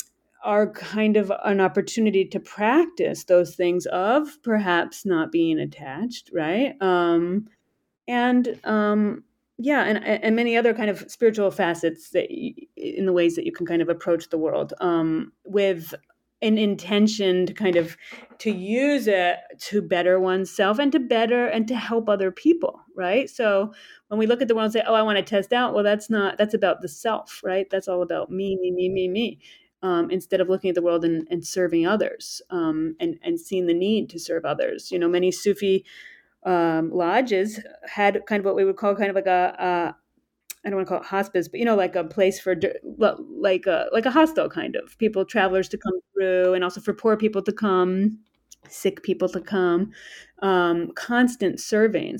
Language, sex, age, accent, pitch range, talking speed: English, female, 30-49, American, 180-220 Hz, 195 wpm